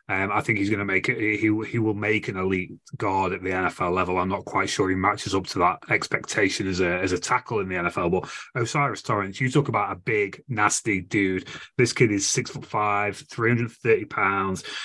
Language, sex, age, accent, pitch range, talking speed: English, male, 30-49, British, 95-115 Hz, 230 wpm